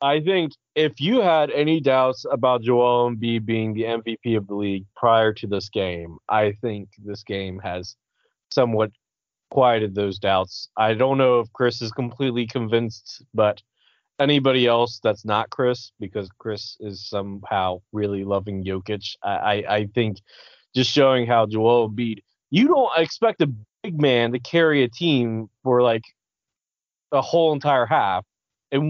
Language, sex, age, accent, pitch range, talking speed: English, male, 20-39, American, 115-155 Hz, 160 wpm